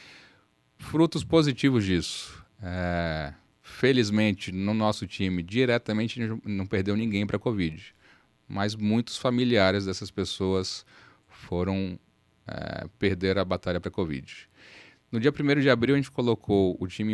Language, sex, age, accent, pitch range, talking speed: Portuguese, male, 10-29, Brazilian, 95-120 Hz, 135 wpm